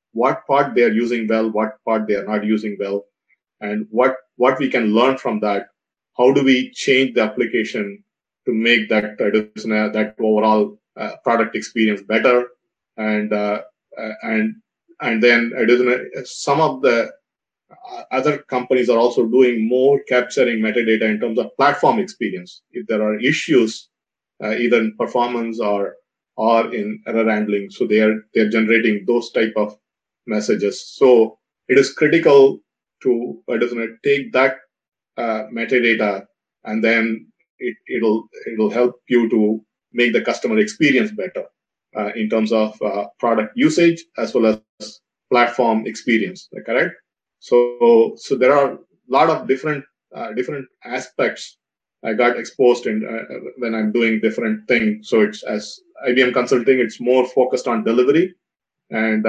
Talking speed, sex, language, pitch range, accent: 155 wpm, male, English, 110-125 Hz, Indian